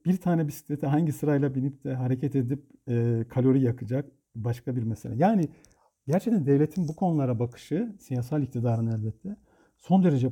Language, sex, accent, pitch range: Turkish, male, native, 135-180 Hz